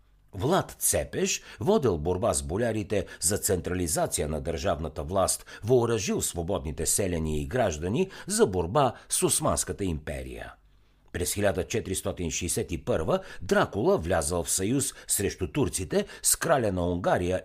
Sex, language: male, Bulgarian